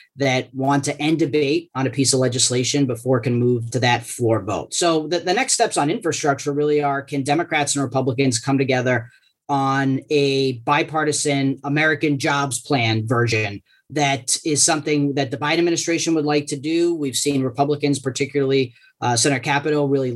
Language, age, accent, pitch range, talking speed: English, 30-49, American, 135-155 Hz, 175 wpm